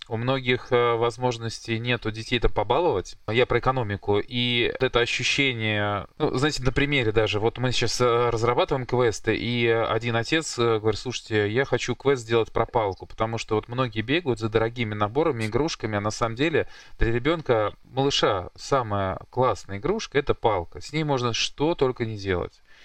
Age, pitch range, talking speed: 20-39, 110-140 Hz, 165 wpm